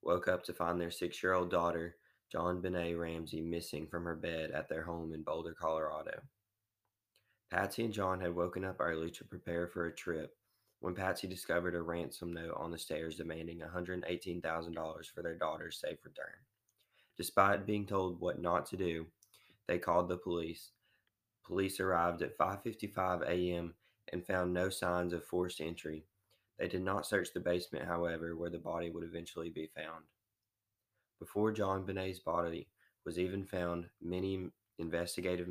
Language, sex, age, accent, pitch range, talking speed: English, male, 20-39, American, 85-95 Hz, 160 wpm